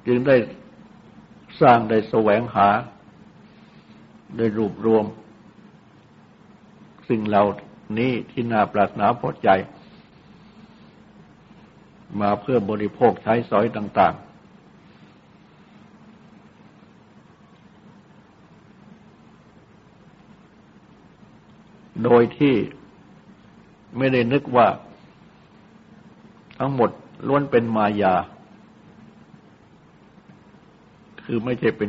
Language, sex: Thai, male